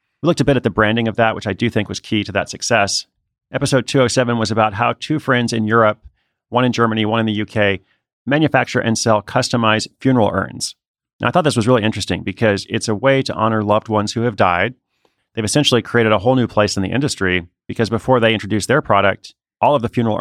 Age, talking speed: 30-49, 230 wpm